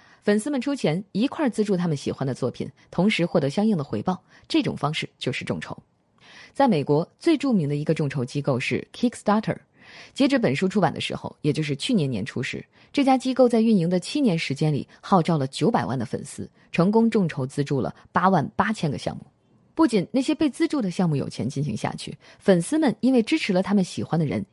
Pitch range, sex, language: 155-235 Hz, female, Chinese